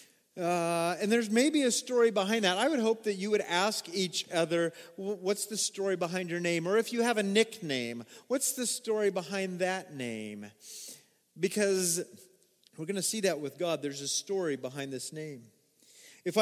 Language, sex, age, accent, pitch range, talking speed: English, male, 40-59, American, 140-200 Hz, 185 wpm